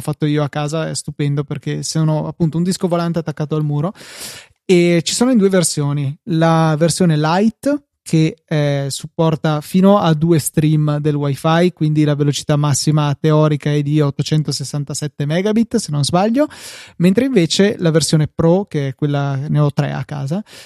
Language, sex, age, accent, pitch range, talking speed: Italian, male, 20-39, native, 150-170 Hz, 170 wpm